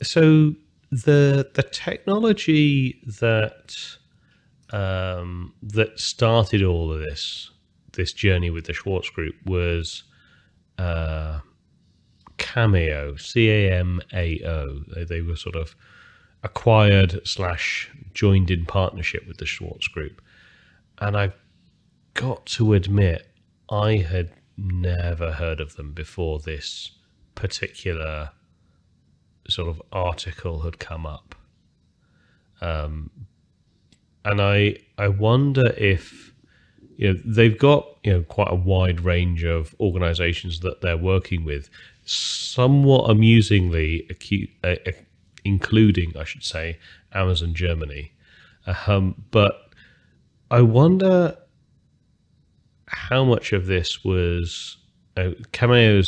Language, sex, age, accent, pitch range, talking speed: English, male, 30-49, British, 85-110 Hz, 105 wpm